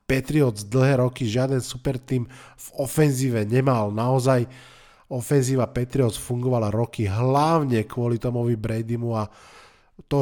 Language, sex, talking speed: Slovak, male, 110 wpm